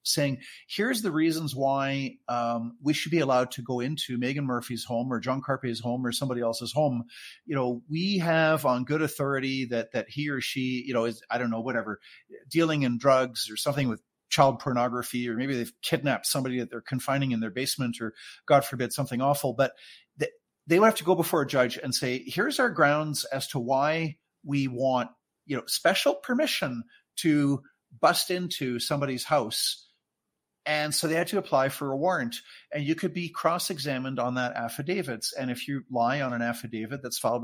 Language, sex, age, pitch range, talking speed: English, male, 40-59, 125-155 Hz, 195 wpm